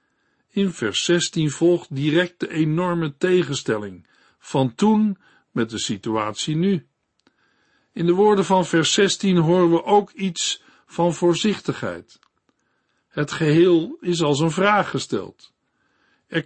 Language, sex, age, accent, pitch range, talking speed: Dutch, male, 60-79, Dutch, 145-185 Hz, 125 wpm